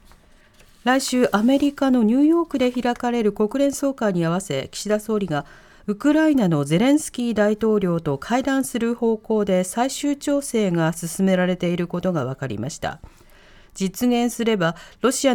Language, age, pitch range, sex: Japanese, 40-59, 180-265 Hz, female